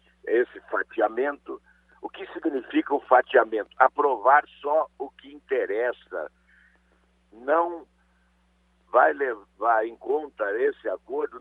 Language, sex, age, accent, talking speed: Portuguese, male, 60-79, Brazilian, 100 wpm